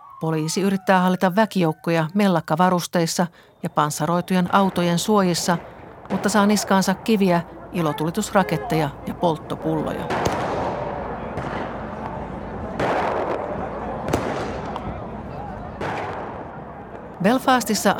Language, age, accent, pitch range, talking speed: Finnish, 50-69, native, 160-195 Hz, 55 wpm